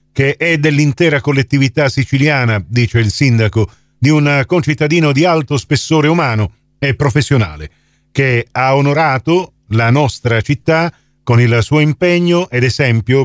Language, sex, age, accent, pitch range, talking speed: Italian, male, 40-59, native, 120-145 Hz, 130 wpm